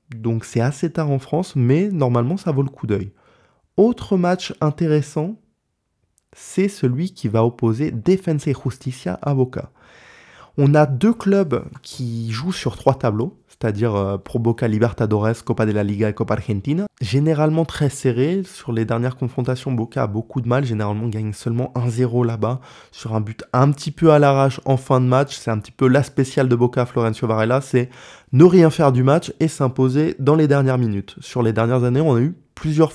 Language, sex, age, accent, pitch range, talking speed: French, male, 20-39, French, 120-150 Hz, 190 wpm